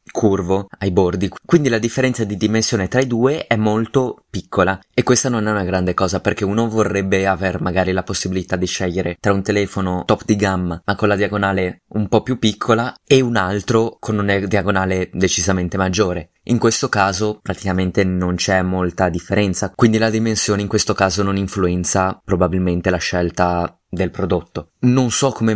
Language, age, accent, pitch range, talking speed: Italian, 20-39, native, 95-115 Hz, 180 wpm